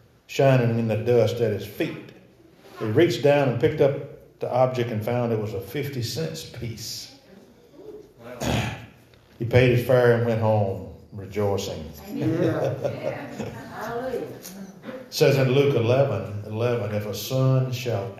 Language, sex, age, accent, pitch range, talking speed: English, male, 50-69, American, 110-135 Hz, 135 wpm